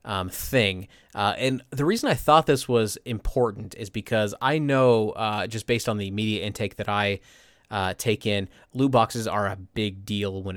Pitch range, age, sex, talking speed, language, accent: 100-120 Hz, 20-39, male, 195 wpm, English, American